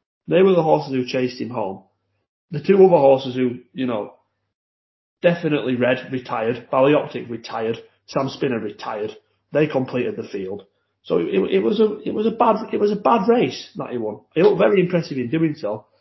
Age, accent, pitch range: 30-49, British, 110-165 Hz